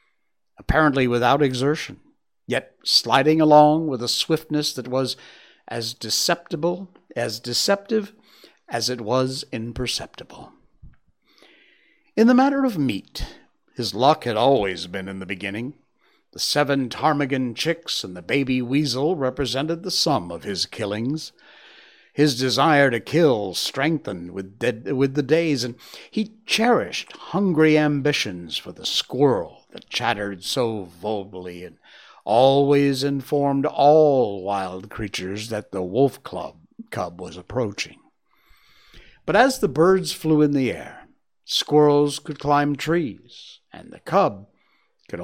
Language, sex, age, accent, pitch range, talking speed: English, male, 60-79, American, 115-155 Hz, 125 wpm